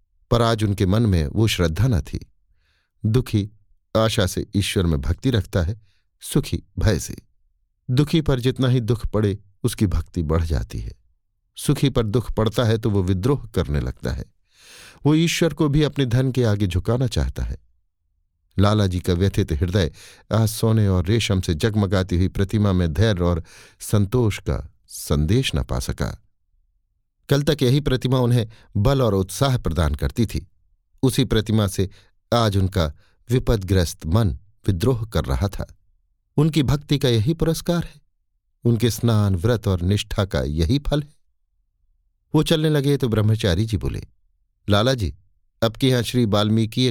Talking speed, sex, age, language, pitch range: 155 wpm, male, 50-69, Hindi, 90-120 Hz